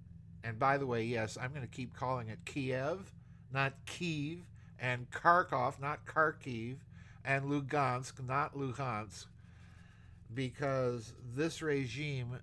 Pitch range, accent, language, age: 100-130 Hz, American, English, 50-69